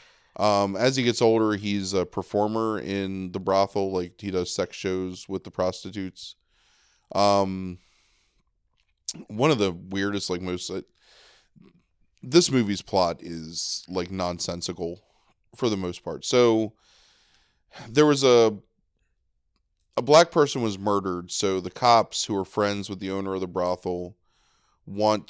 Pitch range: 90-110 Hz